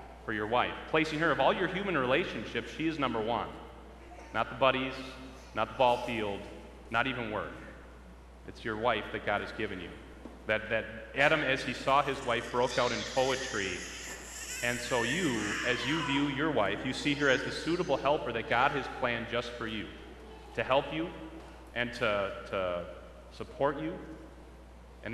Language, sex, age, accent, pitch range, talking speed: English, male, 30-49, American, 105-130 Hz, 180 wpm